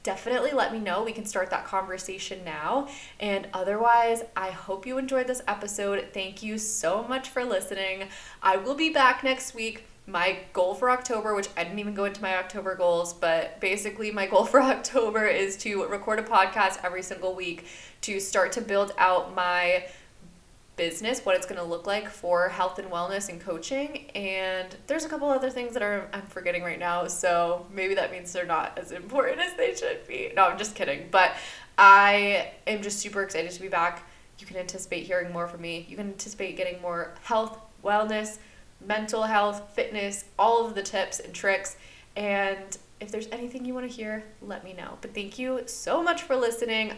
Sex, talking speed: female, 195 wpm